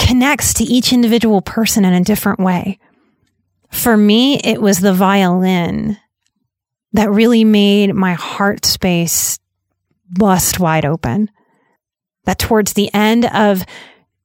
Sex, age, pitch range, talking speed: female, 30-49, 190-235 Hz, 120 wpm